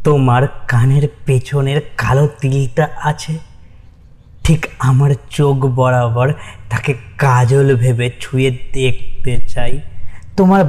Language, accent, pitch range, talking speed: Bengali, native, 125-150 Hz, 65 wpm